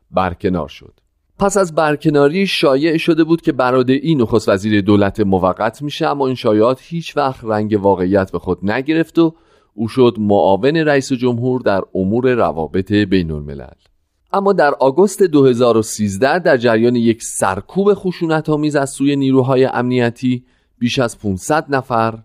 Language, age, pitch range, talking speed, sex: Persian, 40-59, 95-135 Hz, 145 wpm, male